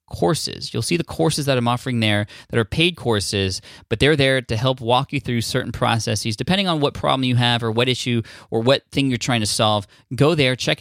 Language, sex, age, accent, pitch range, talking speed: English, male, 20-39, American, 110-135 Hz, 235 wpm